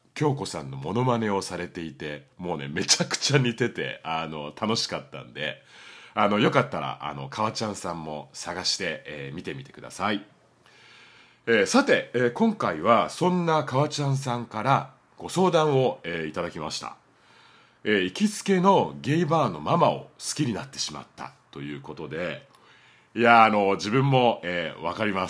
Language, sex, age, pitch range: Japanese, male, 40-59, 90-135 Hz